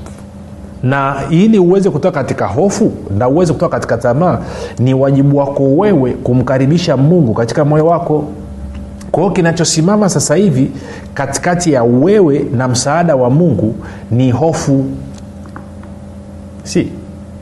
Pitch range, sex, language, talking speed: 115-160 Hz, male, Swahili, 120 wpm